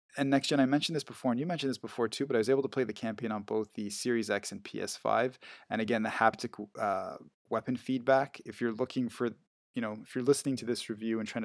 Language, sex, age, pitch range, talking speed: English, male, 20-39, 110-125 Hz, 255 wpm